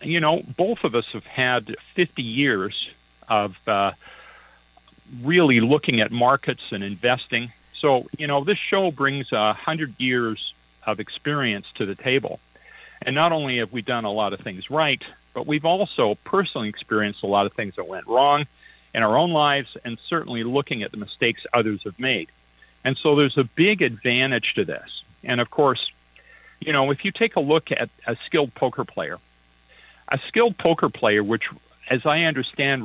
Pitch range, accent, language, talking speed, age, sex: 105-150 Hz, American, English, 175 wpm, 50-69, male